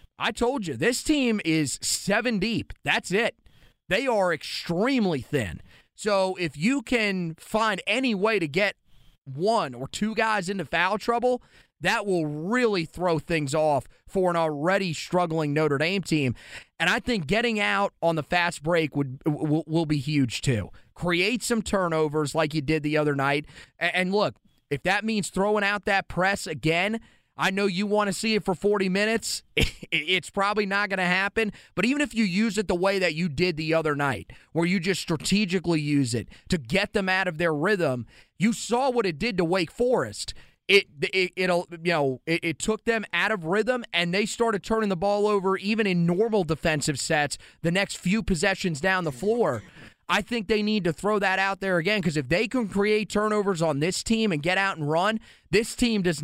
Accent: American